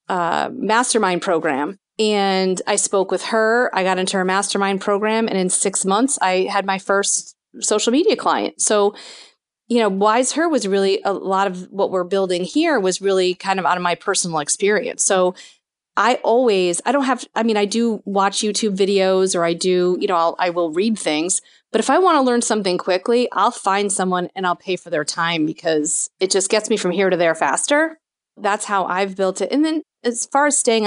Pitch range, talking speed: 185-220 Hz, 210 wpm